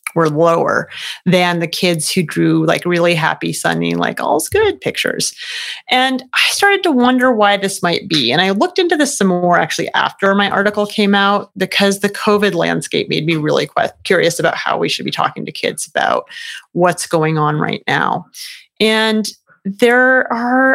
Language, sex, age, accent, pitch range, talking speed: English, female, 30-49, American, 165-225 Hz, 180 wpm